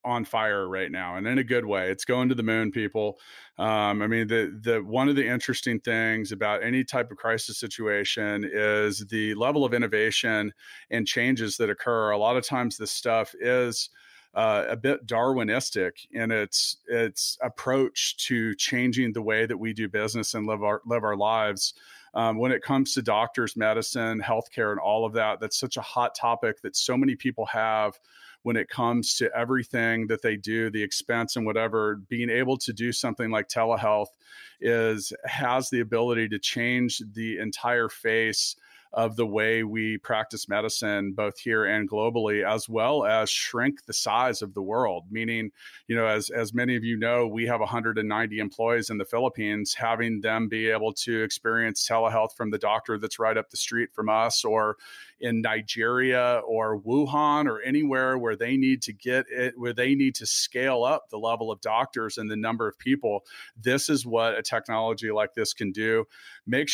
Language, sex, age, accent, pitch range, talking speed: English, male, 40-59, American, 110-125 Hz, 190 wpm